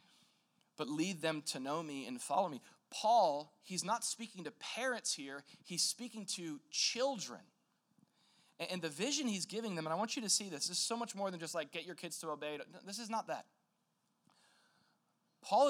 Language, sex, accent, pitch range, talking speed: English, male, American, 150-195 Hz, 195 wpm